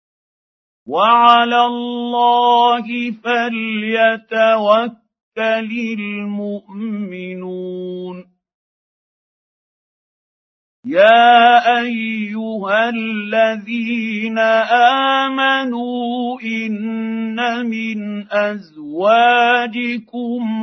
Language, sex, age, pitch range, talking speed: Arabic, male, 50-69, 205-235 Hz, 30 wpm